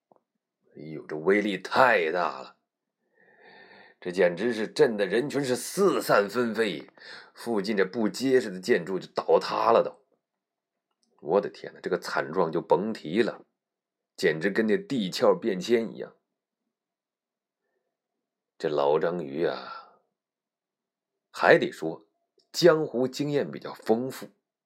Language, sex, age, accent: Chinese, male, 30-49, native